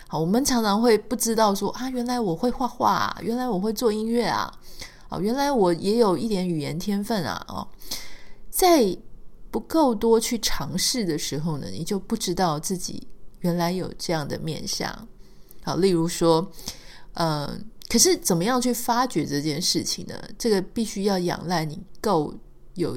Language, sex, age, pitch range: Chinese, female, 30-49, 170-225 Hz